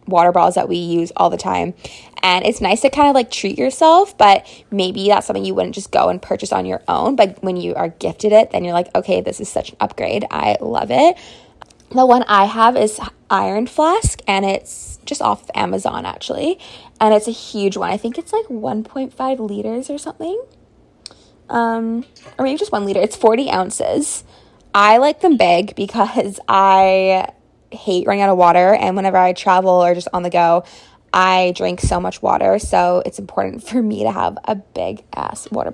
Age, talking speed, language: 20-39, 200 wpm, English